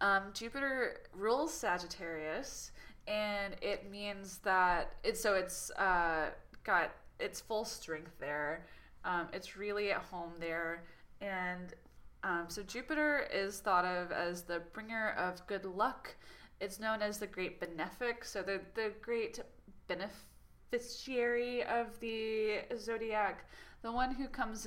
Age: 20-39